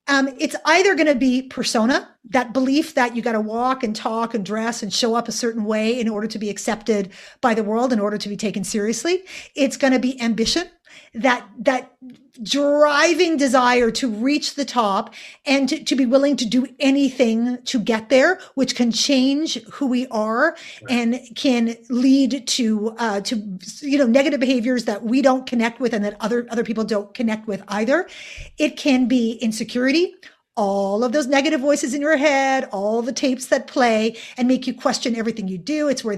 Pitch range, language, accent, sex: 220-275 Hz, English, American, female